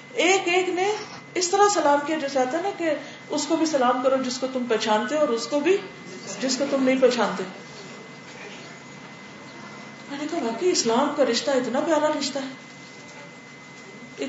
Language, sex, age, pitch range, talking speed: Urdu, female, 40-59, 245-330 Hz, 150 wpm